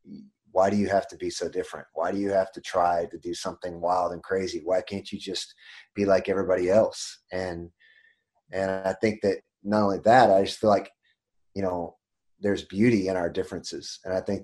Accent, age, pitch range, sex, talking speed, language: American, 30-49, 95-115 Hz, male, 210 wpm, English